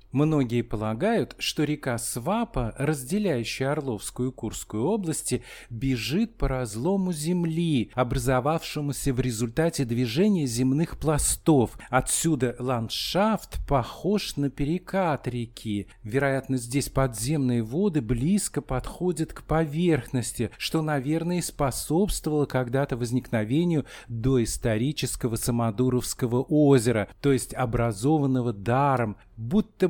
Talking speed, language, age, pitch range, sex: 95 wpm, Russian, 40-59, 120-160 Hz, male